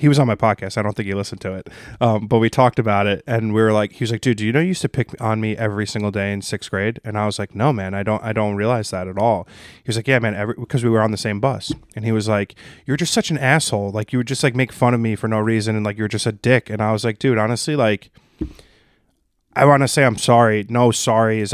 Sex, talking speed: male, 305 wpm